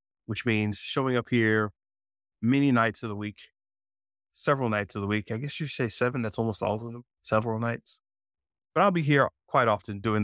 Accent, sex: American, male